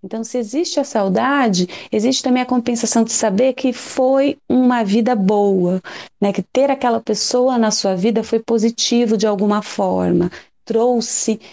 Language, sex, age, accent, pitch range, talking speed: Portuguese, female, 30-49, Brazilian, 200-260 Hz, 155 wpm